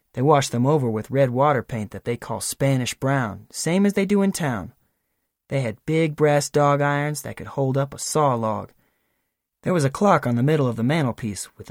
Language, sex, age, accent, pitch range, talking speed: English, male, 20-39, American, 115-145 Hz, 220 wpm